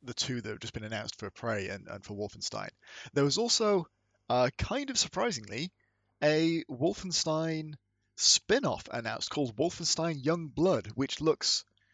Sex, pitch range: male, 110-150 Hz